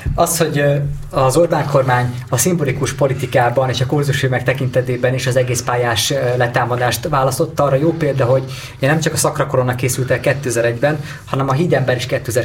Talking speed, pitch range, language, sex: 165 wpm, 130-160 Hz, Hungarian, male